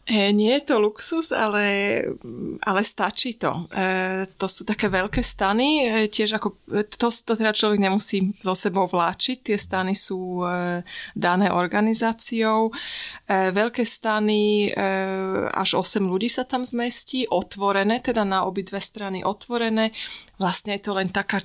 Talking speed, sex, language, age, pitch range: 145 wpm, female, Slovak, 20-39, 180-210 Hz